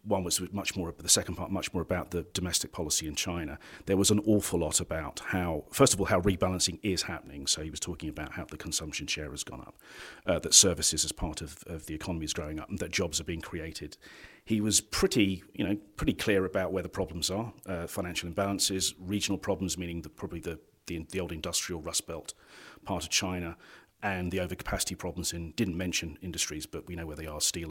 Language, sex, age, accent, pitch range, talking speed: English, male, 40-59, British, 85-105 Hz, 225 wpm